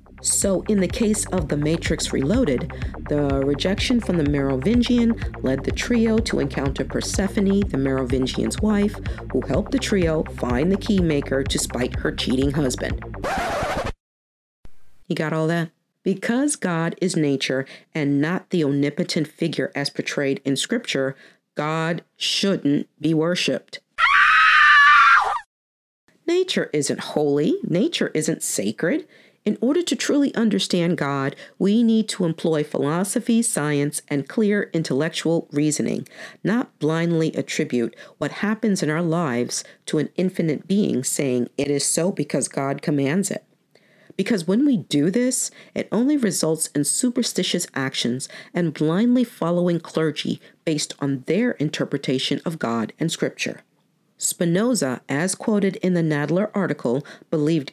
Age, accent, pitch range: 50-69, American, 145-205 Hz